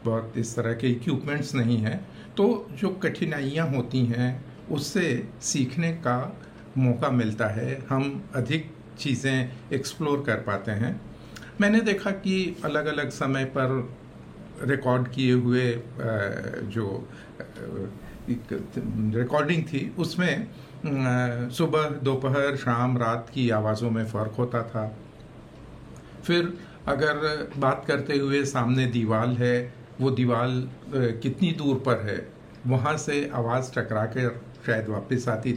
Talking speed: 120 wpm